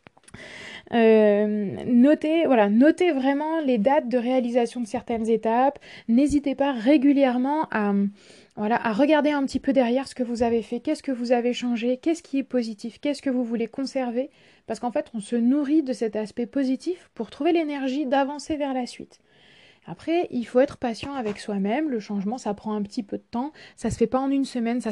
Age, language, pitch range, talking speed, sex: 20-39, French, 215-265 Hz, 195 wpm, female